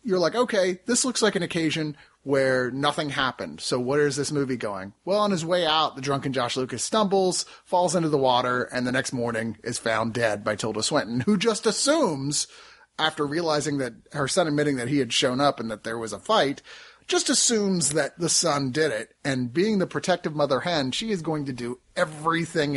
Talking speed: 210 wpm